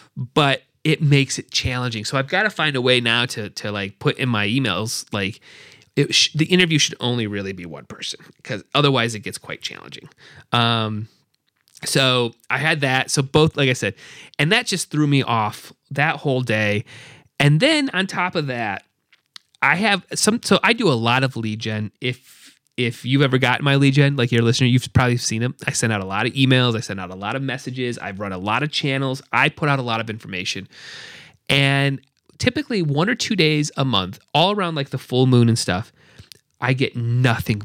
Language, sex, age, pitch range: English, male, 30-49, 115-155 Hz